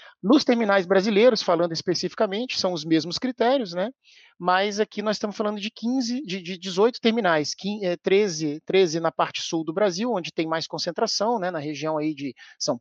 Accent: Brazilian